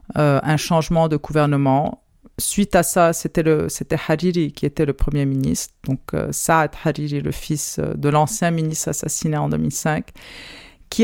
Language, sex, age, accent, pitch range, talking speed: French, female, 40-59, French, 150-180 Hz, 165 wpm